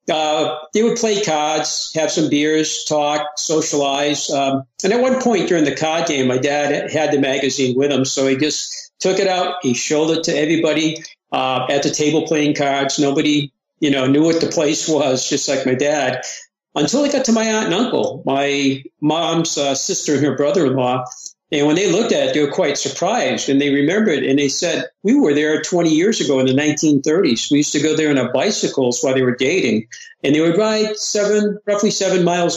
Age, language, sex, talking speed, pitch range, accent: 50-69, English, male, 215 wpm, 140-170 Hz, American